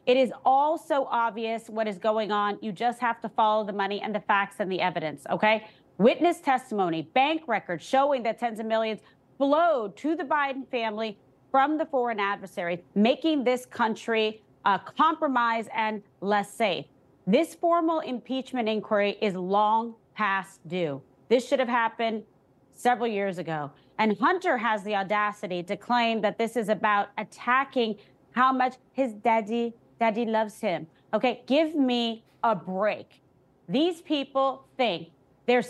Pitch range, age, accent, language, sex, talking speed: 210-260 Hz, 30-49, American, English, female, 155 wpm